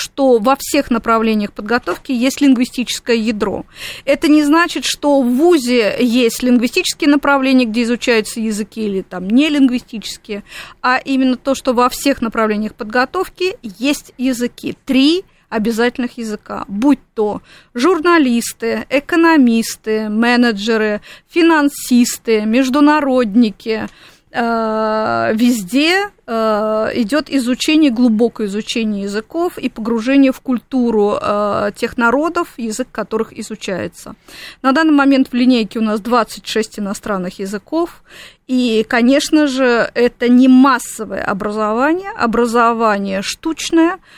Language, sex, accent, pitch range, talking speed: Russian, female, native, 220-275 Hz, 105 wpm